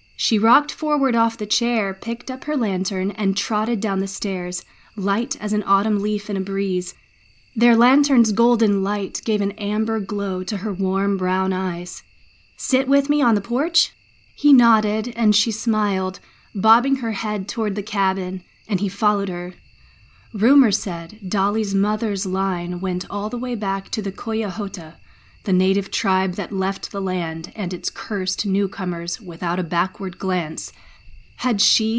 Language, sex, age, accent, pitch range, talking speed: English, female, 30-49, American, 190-220 Hz, 165 wpm